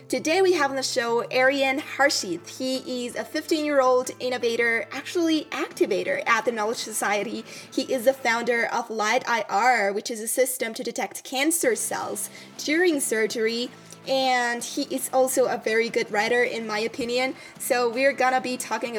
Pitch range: 220-270 Hz